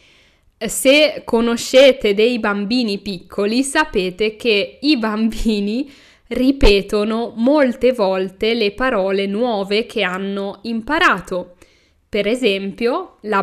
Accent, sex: native, female